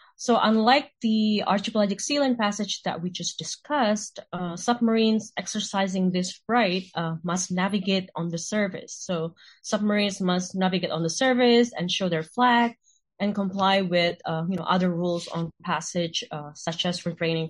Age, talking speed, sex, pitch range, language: 20-39, 160 wpm, female, 175-220 Hz, English